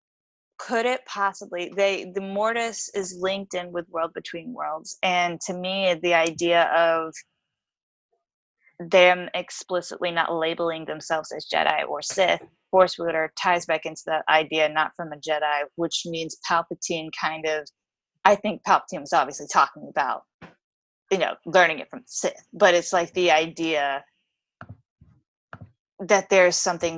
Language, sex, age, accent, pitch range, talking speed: English, female, 20-39, American, 155-180 Hz, 145 wpm